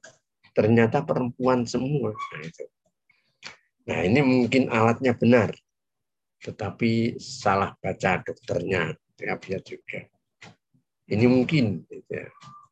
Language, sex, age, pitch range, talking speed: Indonesian, male, 50-69, 90-120 Hz, 75 wpm